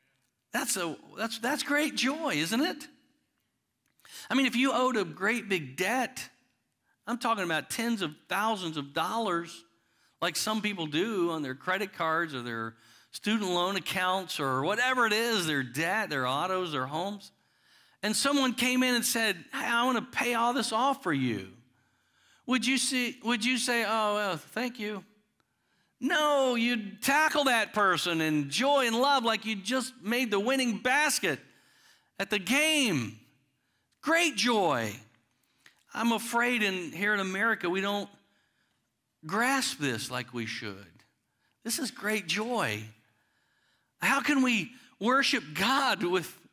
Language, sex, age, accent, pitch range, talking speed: English, male, 50-69, American, 165-250 Hz, 150 wpm